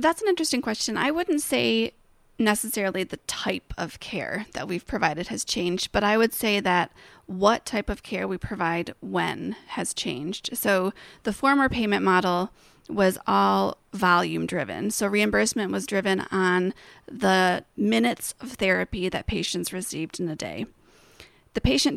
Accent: American